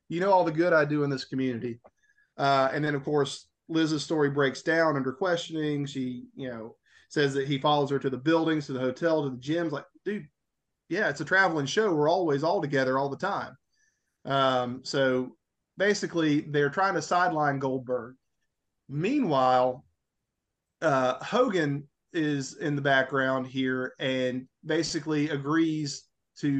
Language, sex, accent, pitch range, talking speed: English, male, American, 135-160 Hz, 160 wpm